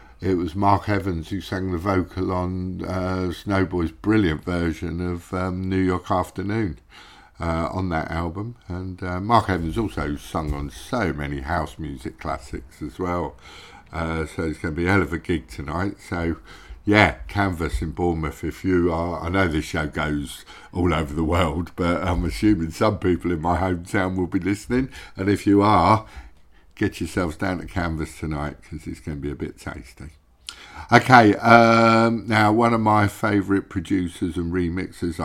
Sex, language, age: male, English, 50-69